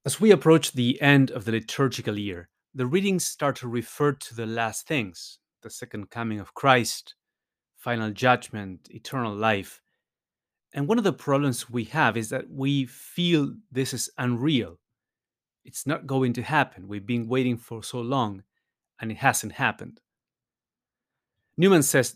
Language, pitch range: English, 110-145 Hz